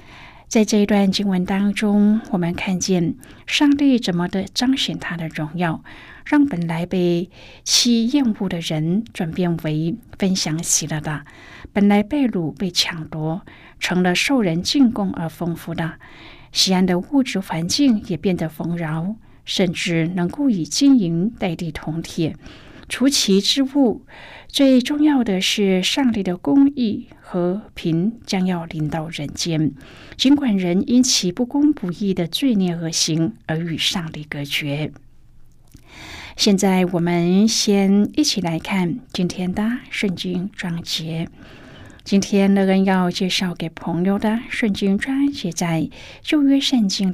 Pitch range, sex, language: 165-215 Hz, female, Chinese